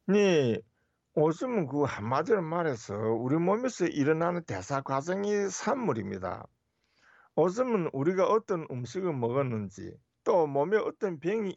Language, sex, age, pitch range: Korean, male, 50-69, 120-180 Hz